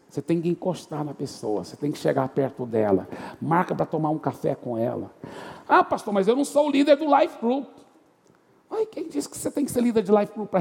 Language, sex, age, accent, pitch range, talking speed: Portuguese, male, 60-79, Brazilian, 175-275 Hz, 245 wpm